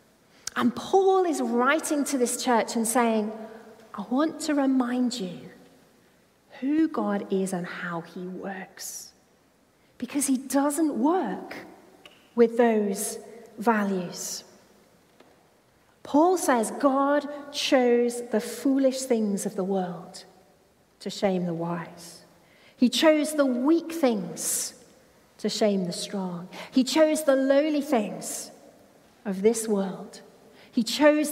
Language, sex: English, female